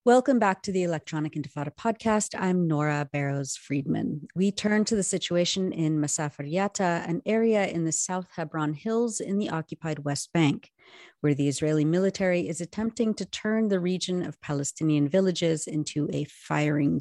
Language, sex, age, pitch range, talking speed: English, female, 30-49, 155-200 Hz, 160 wpm